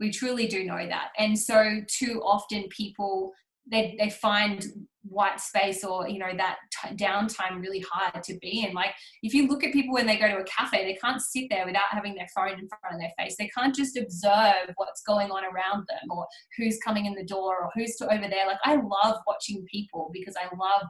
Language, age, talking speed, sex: English, 20-39, 220 wpm, female